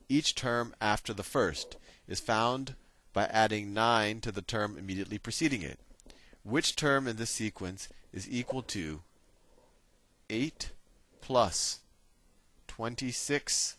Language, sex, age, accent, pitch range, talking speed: English, male, 40-59, American, 95-130 Hz, 115 wpm